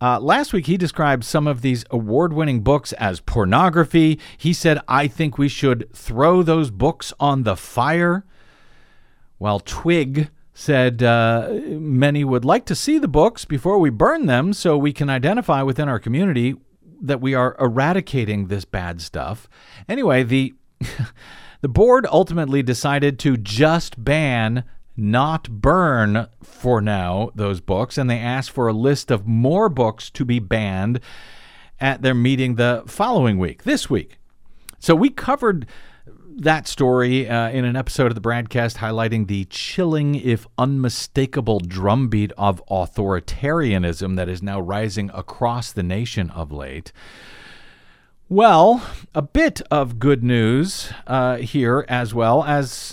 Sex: male